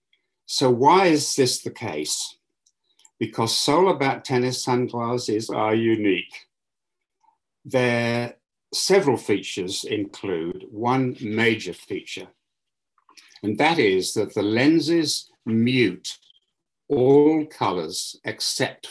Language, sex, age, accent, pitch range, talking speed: English, male, 60-79, British, 100-140 Hz, 95 wpm